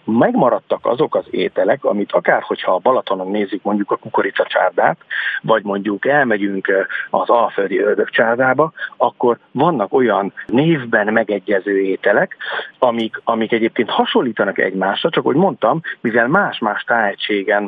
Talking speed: 125 wpm